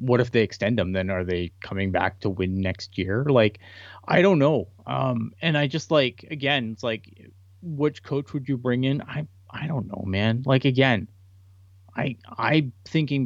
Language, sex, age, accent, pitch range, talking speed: English, male, 30-49, American, 95-125 Hz, 190 wpm